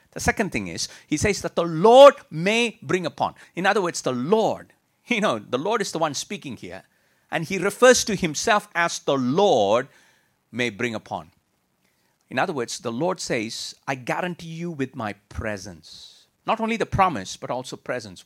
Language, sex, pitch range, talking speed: English, male, 120-175 Hz, 185 wpm